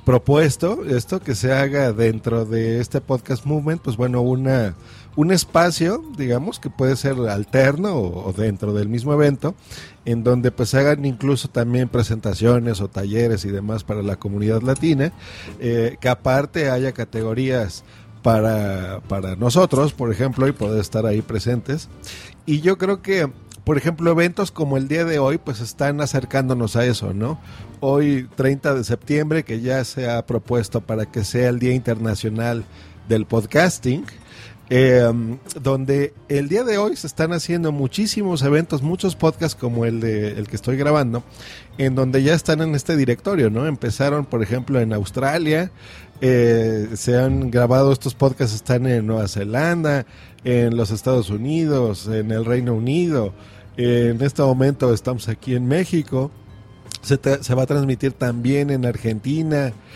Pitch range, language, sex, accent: 115-140 Hz, Spanish, male, Mexican